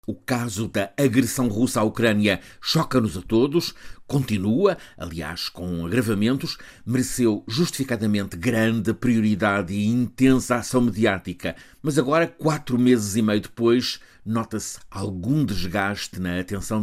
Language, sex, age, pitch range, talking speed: Portuguese, male, 60-79, 100-130 Hz, 120 wpm